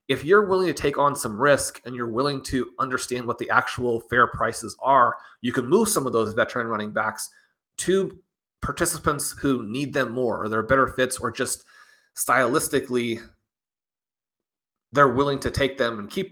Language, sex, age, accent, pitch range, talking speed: English, male, 30-49, American, 120-145 Hz, 175 wpm